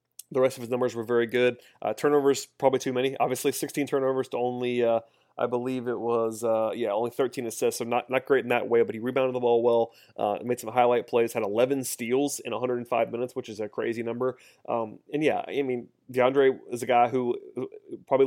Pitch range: 115-125 Hz